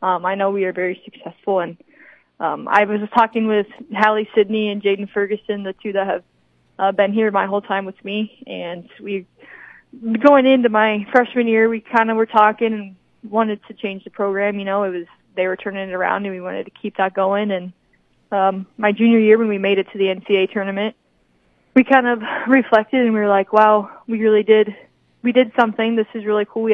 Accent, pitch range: American, 190-220 Hz